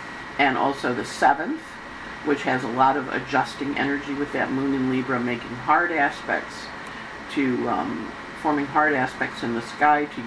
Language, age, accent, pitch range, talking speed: English, 50-69, American, 115-140 Hz, 165 wpm